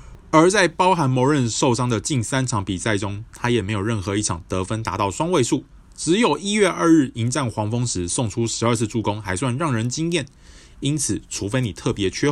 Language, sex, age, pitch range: Chinese, male, 20-39, 105-155 Hz